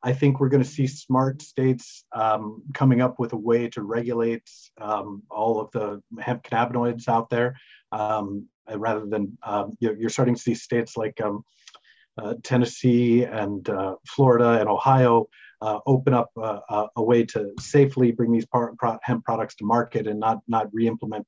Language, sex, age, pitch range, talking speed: English, male, 40-59, 115-130 Hz, 170 wpm